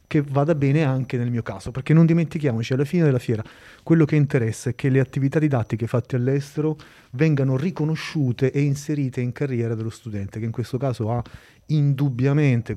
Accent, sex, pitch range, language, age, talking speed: native, male, 110-140 Hz, Italian, 30-49, 180 wpm